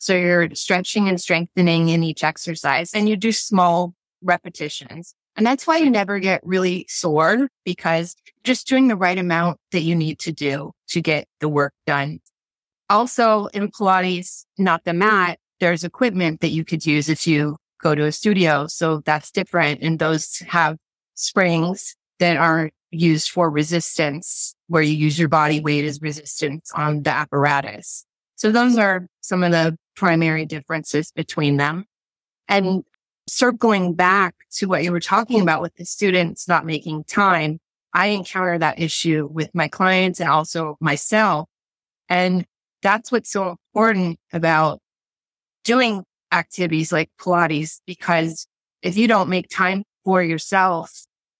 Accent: American